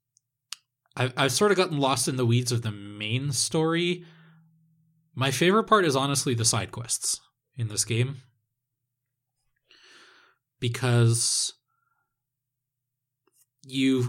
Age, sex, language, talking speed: 20-39, male, English, 110 wpm